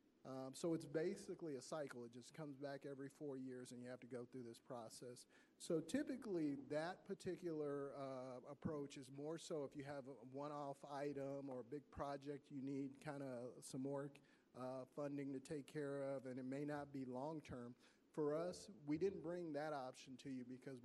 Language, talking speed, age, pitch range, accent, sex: English, 195 wpm, 50-69, 130-150 Hz, American, male